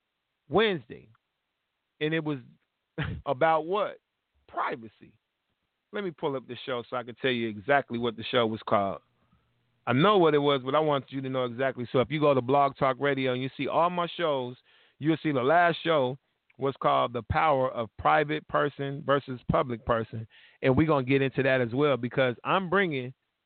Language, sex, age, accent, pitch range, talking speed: English, male, 40-59, American, 125-150 Hz, 195 wpm